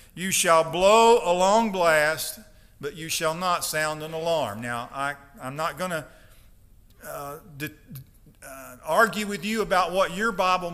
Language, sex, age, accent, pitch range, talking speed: English, male, 50-69, American, 150-200 Hz, 145 wpm